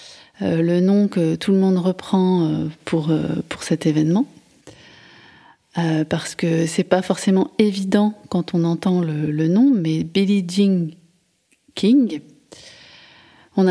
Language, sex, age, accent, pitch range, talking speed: French, female, 30-49, French, 170-200 Hz, 145 wpm